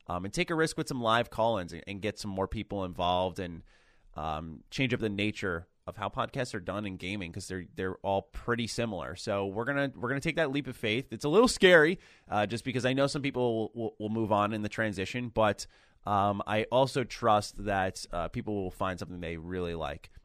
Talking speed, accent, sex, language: 235 wpm, American, male, English